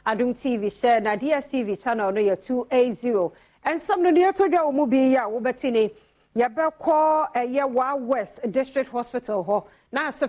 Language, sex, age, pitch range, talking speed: English, female, 40-59, 205-265 Hz, 170 wpm